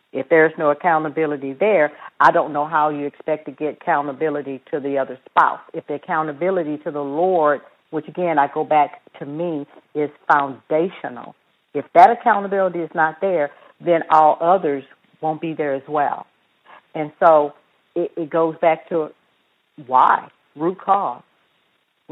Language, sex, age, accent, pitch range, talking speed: English, female, 50-69, American, 150-170 Hz, 155 wpm